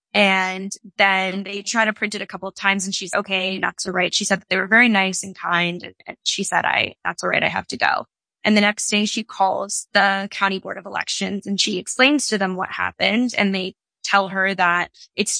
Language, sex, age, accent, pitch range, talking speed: English, female, 10-29, American, 190-210 Hz, 240 wpm